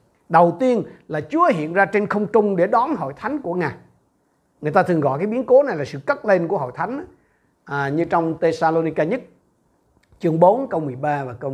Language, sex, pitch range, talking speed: Vietnamese, male, 155-230 Hz, 215 wpm